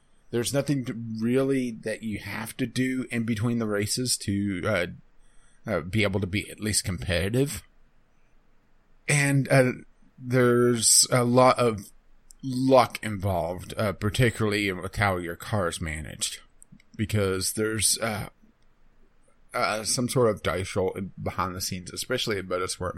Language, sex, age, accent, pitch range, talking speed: English, male, 30-49, American, 95-115 Hz, 140 wpm